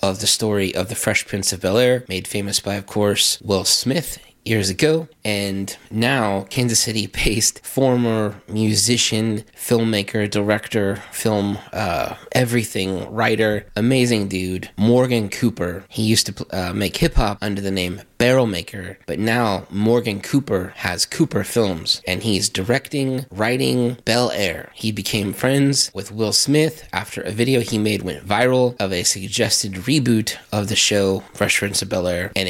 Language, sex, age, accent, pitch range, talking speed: English, male, 20-39, American, 95-120 Hz, 155 wpm